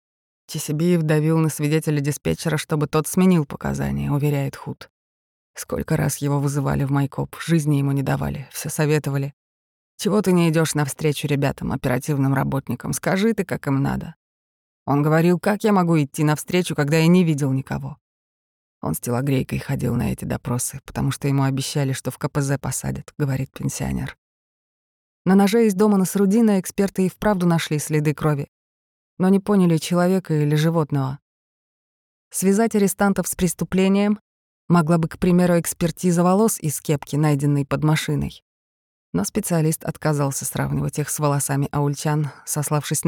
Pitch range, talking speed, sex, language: 140-170 Hz, 150 wpm, female, Russian